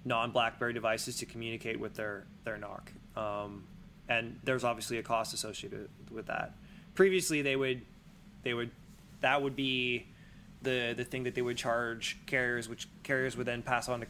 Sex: male